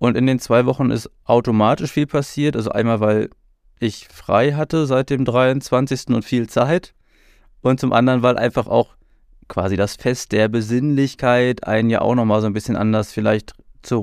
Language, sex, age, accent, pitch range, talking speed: German, male, 20-39, German, 105-125 Hz, 180 wpm